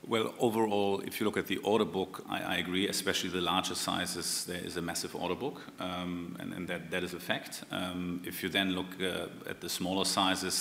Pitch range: 90-95 Hz